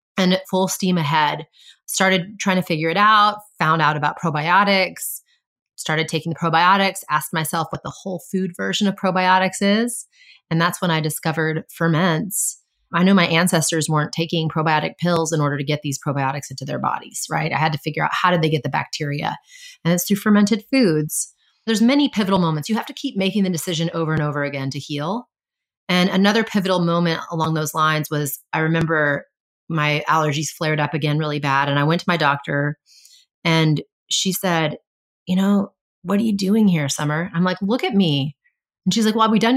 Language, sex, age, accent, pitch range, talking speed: English, female, 30-49, American, 155-200 Hz, 200 wpm